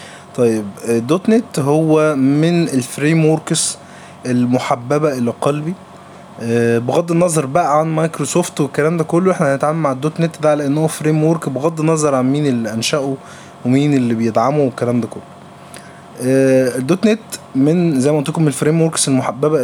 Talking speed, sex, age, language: 140 wpm, male, 20-39, Arabic